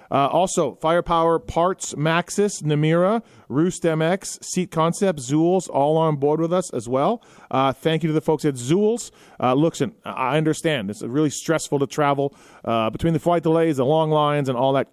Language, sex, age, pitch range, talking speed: English, male, 30-49, 130-170 Hz, 190 wpm